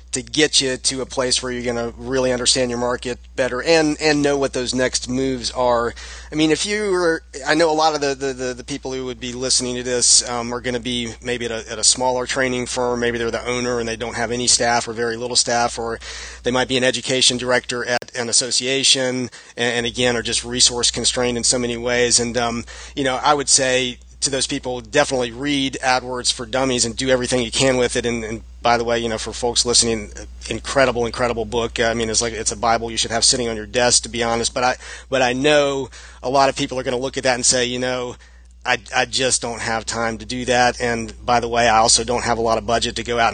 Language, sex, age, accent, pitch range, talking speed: English, male, 40-59, American, 120-130 Hz, 260 wpm